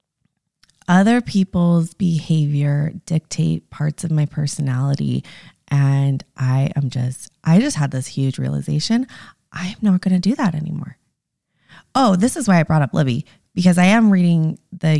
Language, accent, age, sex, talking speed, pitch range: English, American, 20-39, female, 150 wpm, 145-180 Hz